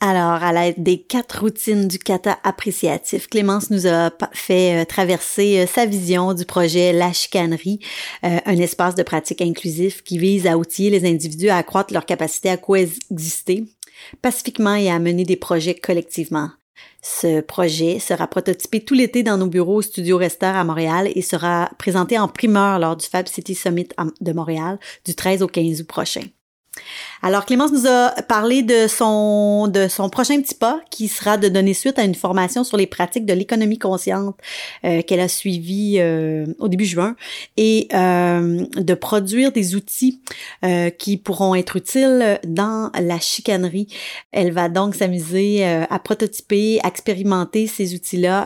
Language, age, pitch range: French, 30-49, 175-205 Hz